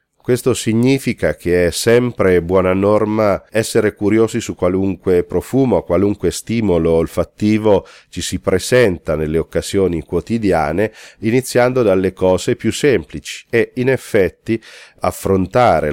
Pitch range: 85-110 Hz